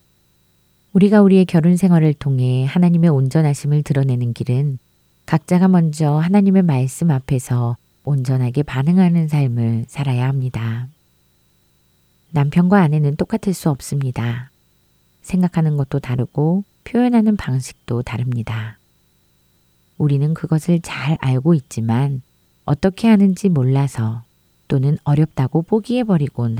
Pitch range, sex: 125-170 Hz, female